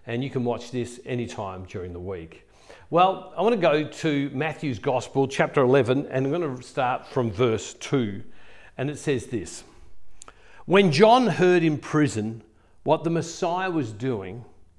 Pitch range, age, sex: 115-160 Hz, 50-69, male